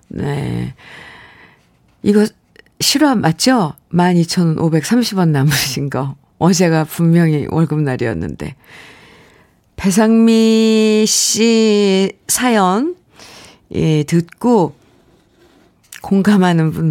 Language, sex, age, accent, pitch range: Korean, female, 50-69, native, 160-235 Hz